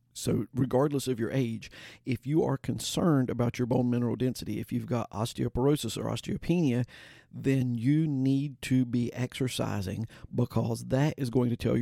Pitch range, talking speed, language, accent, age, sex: 115-135 Hz, 165 wpm, English, American, 50-69, male